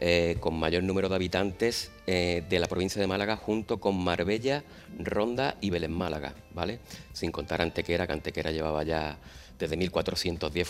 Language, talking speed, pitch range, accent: Spanish, 165 wpm, 85-105 Hz, Spanish